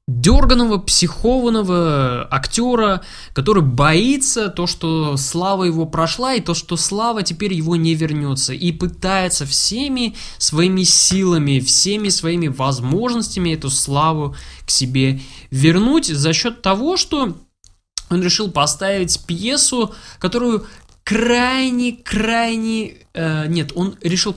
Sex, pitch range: male, 145-215 Hz